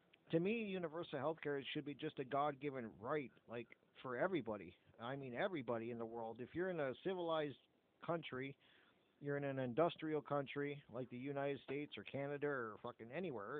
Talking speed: 175 wpm